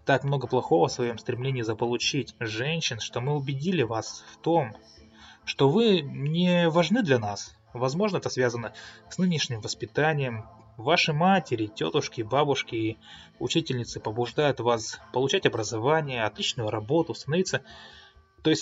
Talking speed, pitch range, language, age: 130 wpm, 115-155 Hz, Russian, 20-39